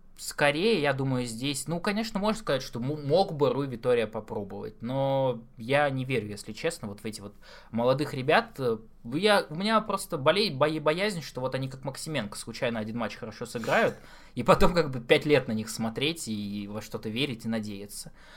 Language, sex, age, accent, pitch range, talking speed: Russian, male, 20-39, native, 120-165 Hz, 185 wpm